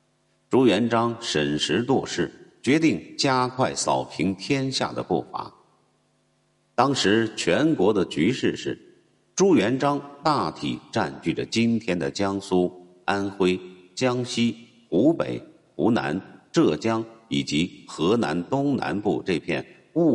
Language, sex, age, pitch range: Chinese, male, 50-69, 85-125 Hz